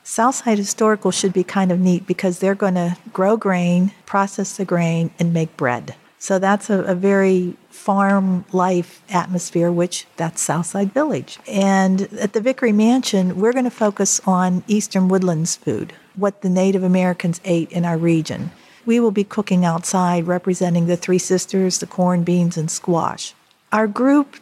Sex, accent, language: female, American, English